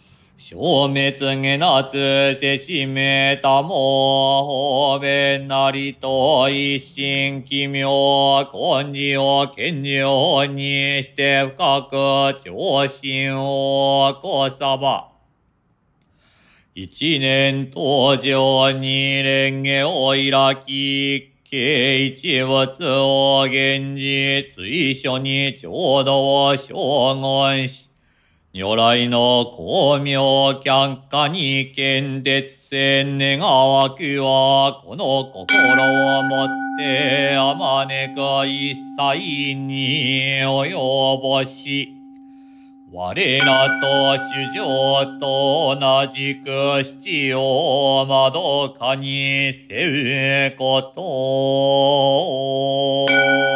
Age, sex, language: 40-59, male, Japanese